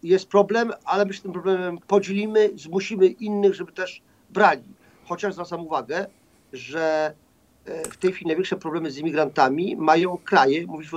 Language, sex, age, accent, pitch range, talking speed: Polish, male, 40-59, native, 165-205 Hz, 150 wpm